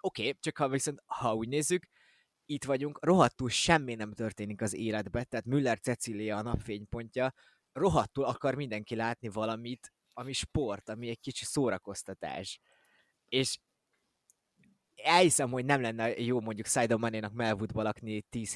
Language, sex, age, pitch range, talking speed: Hungarian, male, 20-39, 105-130 Hz, 140 wpm